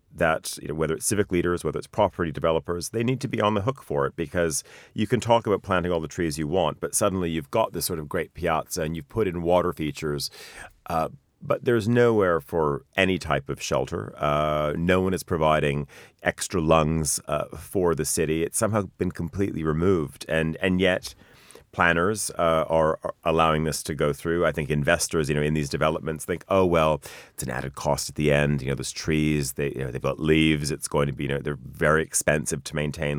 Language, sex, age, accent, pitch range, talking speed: English, male, 40-59, American, 75-95 Hz, 210 wpm